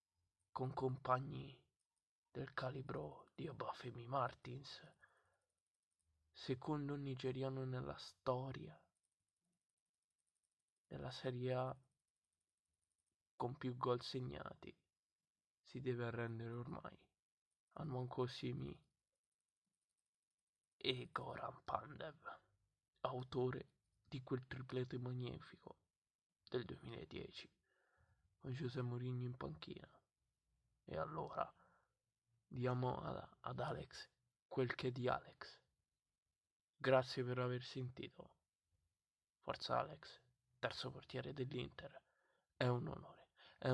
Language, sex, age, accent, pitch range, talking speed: Italian, male, 20-39, native, 115-130 Hz, 90 wpm